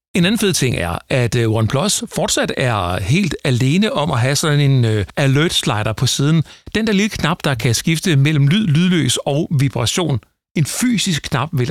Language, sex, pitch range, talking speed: Danish, male, 115-165 Hz, 185 wpm